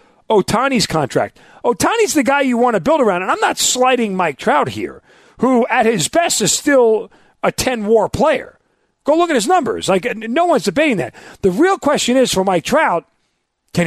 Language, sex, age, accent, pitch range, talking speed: English, male, 40-59, American, 150-220 Hz, 190 wpm